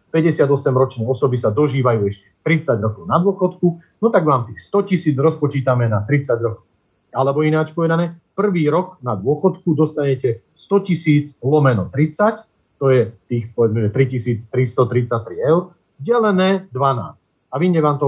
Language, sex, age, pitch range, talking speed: Slovak, male, 40-59, 125-160 Hz, 145 wpm